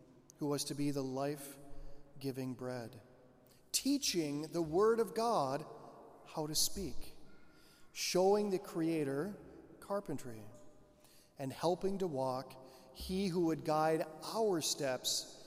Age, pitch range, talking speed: 40-59, 145-175 Hz, 115 wpm